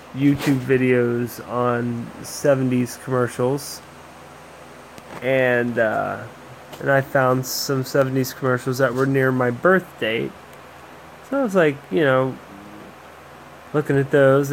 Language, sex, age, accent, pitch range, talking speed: English, male, 20-39, American, 120-165 Hz, 115 wpm